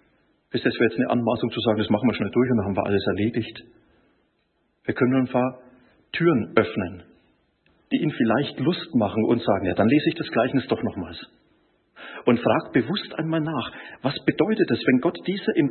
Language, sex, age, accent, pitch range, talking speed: German, male, 40-59, German, 120-165 Hz, 205 wpm